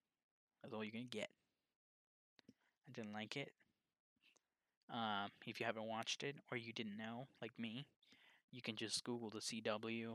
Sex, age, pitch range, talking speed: male, 10-29, 110-120 Hz, 165 wpm